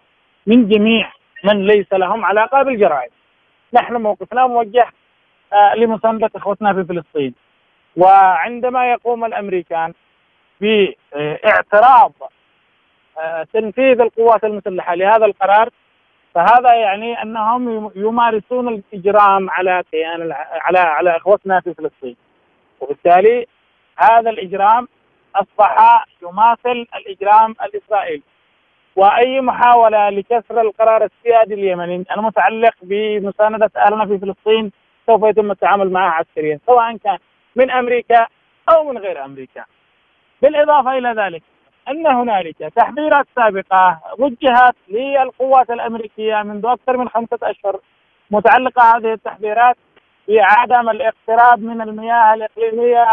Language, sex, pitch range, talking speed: Arabic, male, 195-240 Hz, 100 wpm